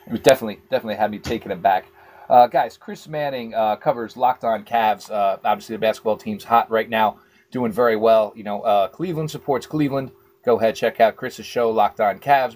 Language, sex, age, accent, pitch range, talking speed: English, male, 30-49, American, 115-150 Hz, 210 wpm